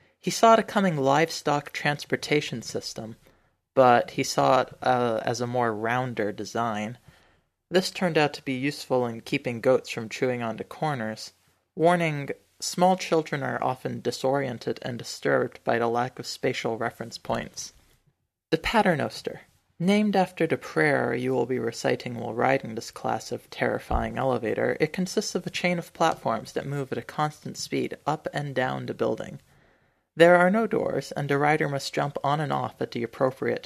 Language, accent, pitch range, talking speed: English, American, 120-155 Hz, 170 wpm